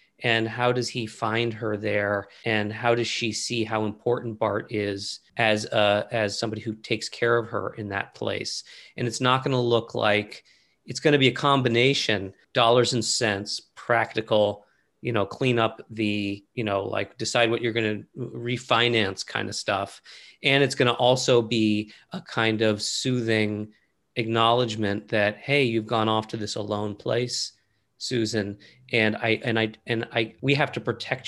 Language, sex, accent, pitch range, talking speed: English, male, American, 105-125 Hz, 180 wpm